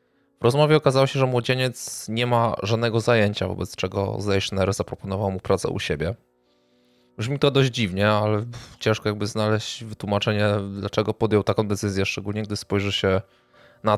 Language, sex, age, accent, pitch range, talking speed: Polish, male, 20-39, native, 100-115 Hz, 155 wpm